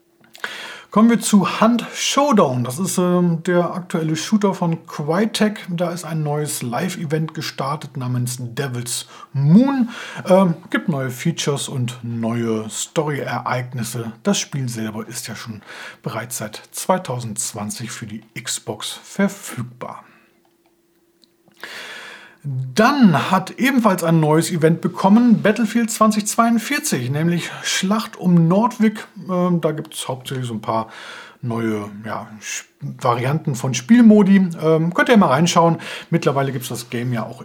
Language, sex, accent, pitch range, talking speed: German, male, German, 125-190 Hz, 125 wpm